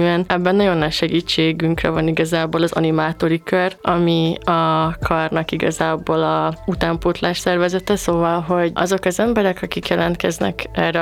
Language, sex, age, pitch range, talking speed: Hungarian, female, 20-39, 165-185 Hz, 130 wpm